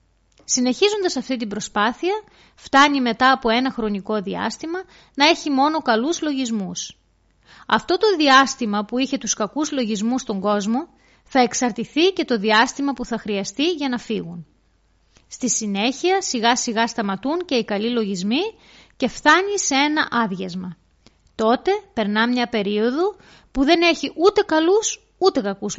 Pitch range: 215-315 Hz